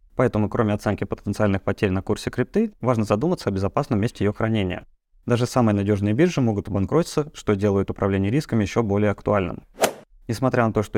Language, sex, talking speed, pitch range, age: Russian, male, 175 wpm, 100-125 Hz, 20-39